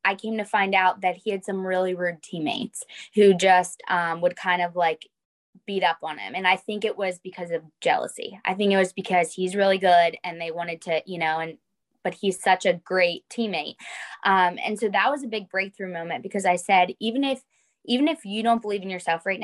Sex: female